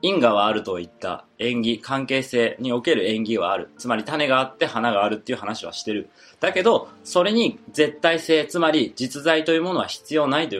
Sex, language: male, Japanese